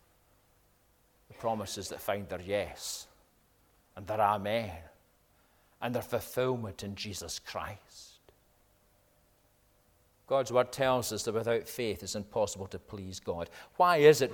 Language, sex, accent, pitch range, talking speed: English, male, British, 100-120 Hz, 120 wpm